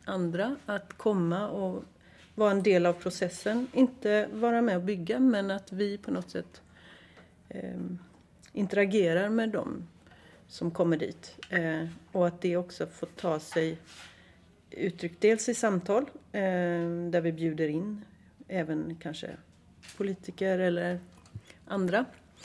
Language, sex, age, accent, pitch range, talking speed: Swedish, female, 40-59, native, 165-200 Hz, 130 wpm